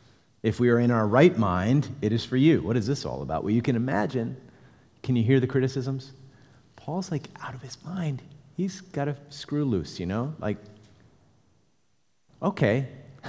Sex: male